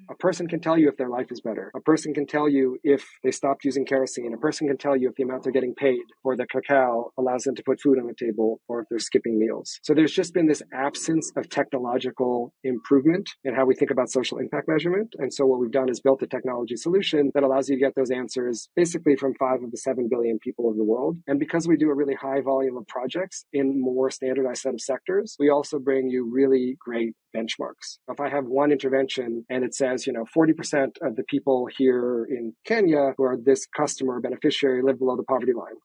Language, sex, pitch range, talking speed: English, male, 130-150 Hz, 240 wpm